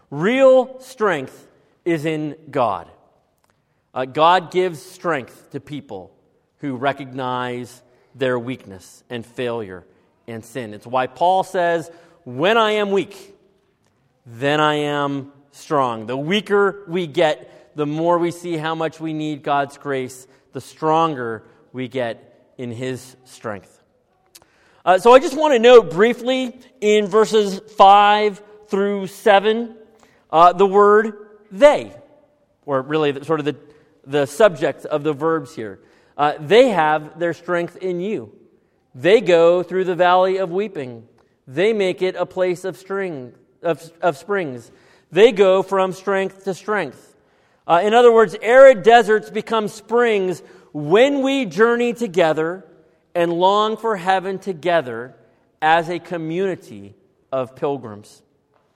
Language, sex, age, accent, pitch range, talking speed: English, male, 40-59, American, 140-200 Hz, 135 wpm